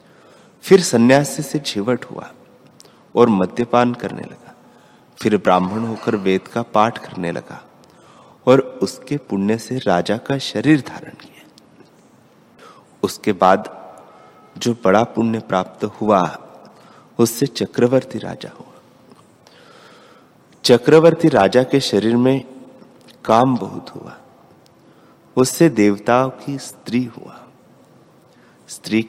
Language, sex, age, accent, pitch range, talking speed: Hindi, male, 30-49, native, 105-130 Hz, 105 wpm